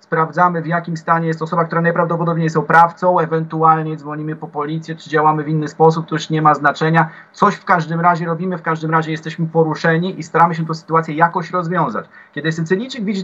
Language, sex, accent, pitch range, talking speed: Polish, male, native, 160-185 Hz, 200 wpm